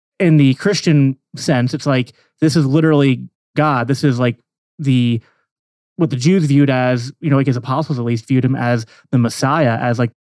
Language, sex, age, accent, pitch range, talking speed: English, male, 20-39, American, 125-155 Hz, 195 wpm